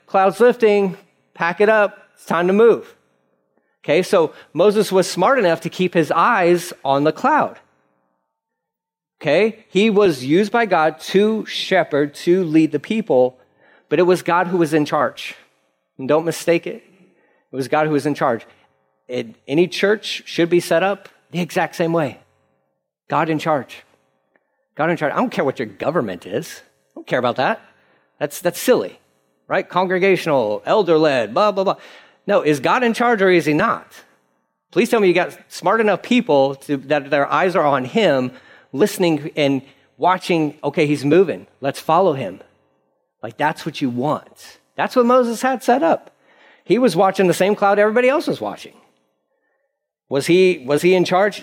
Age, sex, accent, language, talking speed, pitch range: 40-59, male, American, English, 175 wpm, 135-195 Hz